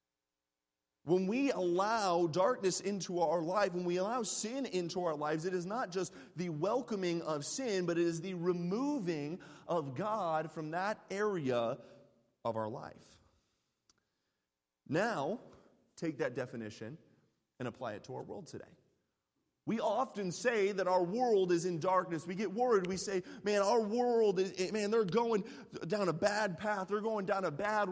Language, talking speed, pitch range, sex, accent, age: English, 160 wpm, 165-215 Hz, male, American, 30-49